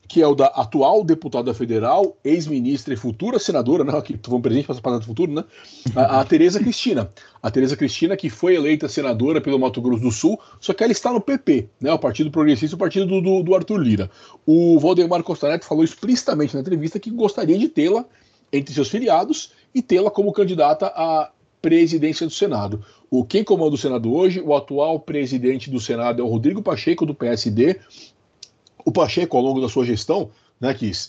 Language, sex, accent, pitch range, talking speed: Portuguese, male, Brazilian, 125-200 Hz, 190 wpm